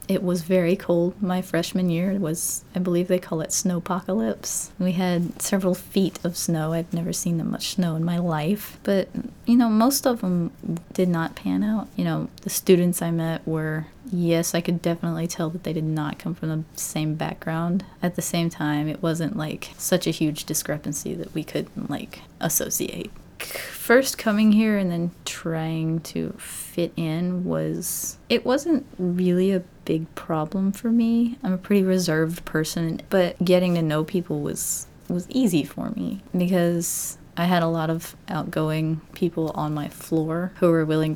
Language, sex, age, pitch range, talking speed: English, female, 20-39, 160-195 Hz, 180 wpm